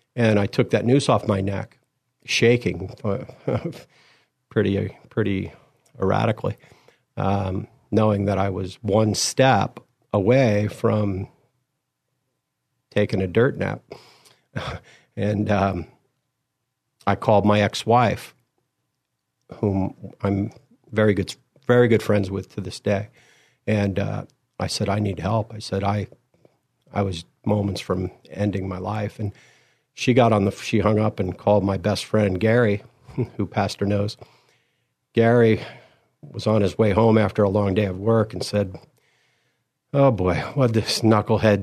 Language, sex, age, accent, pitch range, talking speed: English, male, 50-69, American, 100-120 Hz, 140 wpm